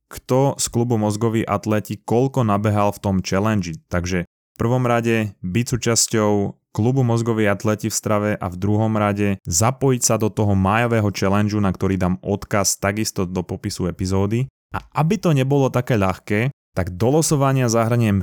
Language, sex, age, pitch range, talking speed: Slovak, male, 20-39, 100-120 Hz, 160 wpm